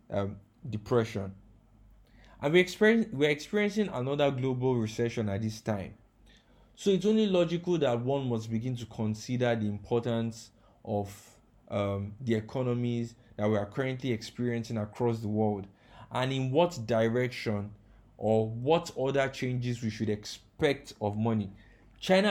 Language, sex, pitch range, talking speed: English, male, 110-150 Hz, 135 wpm